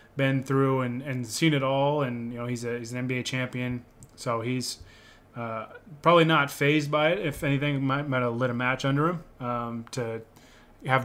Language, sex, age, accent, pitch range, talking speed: English, male, 20-39, American, 125-145 Hz, 200 wpm